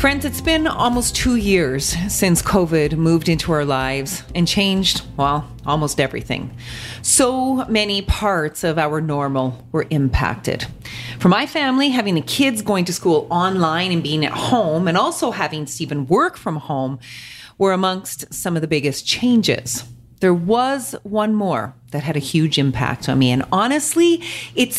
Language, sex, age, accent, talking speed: English, female, 40-59, American, 160 wpm